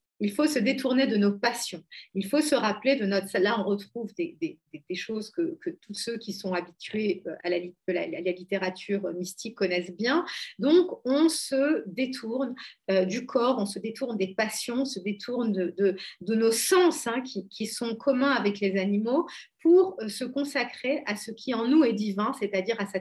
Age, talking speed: 40-59, 185 wpm